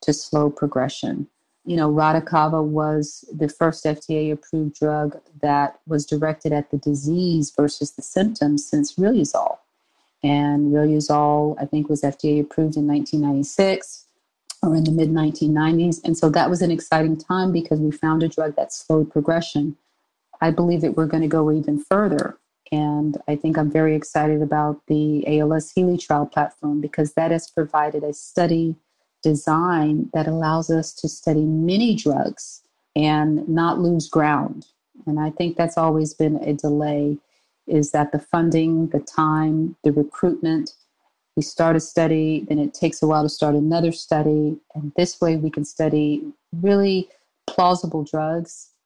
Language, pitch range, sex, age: English, 150-165 Hz, female, 40-59